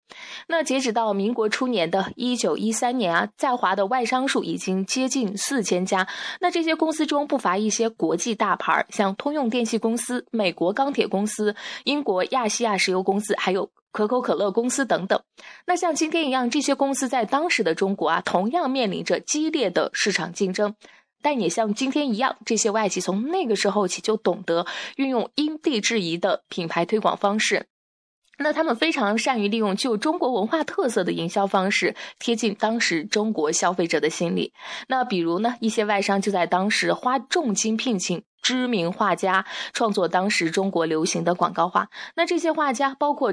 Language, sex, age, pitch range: Chinese, female, 20-39, 195-265 Hz